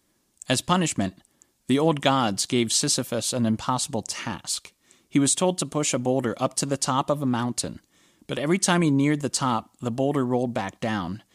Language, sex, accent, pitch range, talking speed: English, male, American, 115-145 Hz, 190 wpm